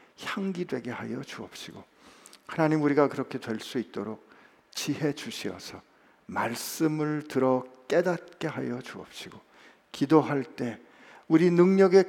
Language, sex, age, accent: Korean, male, 50-69, native